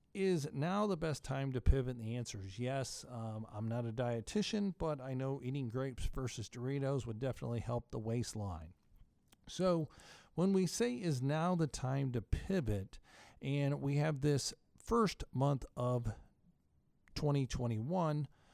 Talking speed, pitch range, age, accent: 150 wpm, 120-150 Hz, 50-69, American